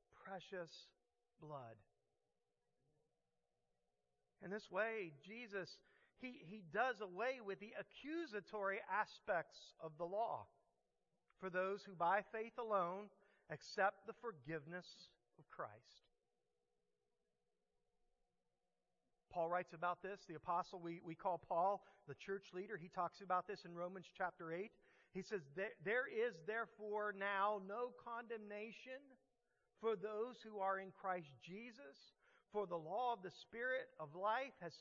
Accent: American